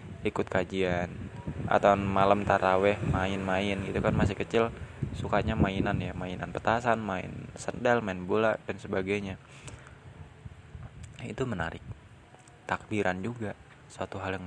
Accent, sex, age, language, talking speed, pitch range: native, male, 20-39, Indonesian, 115 wpm, 95-125 Hz